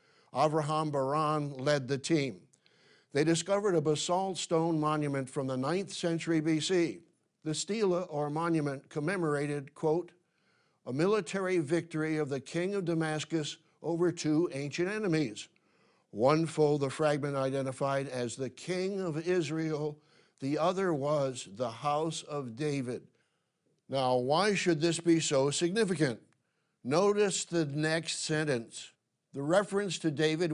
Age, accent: 60-79, American